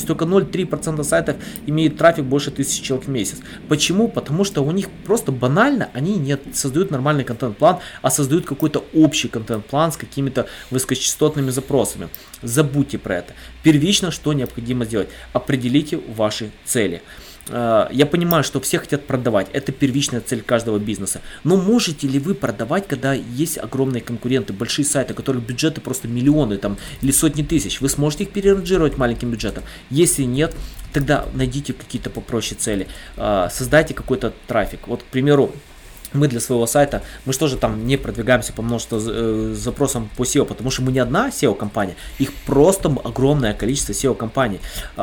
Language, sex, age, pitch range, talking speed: Russian, male, 20-39, 120-150 Hz, 155 wpm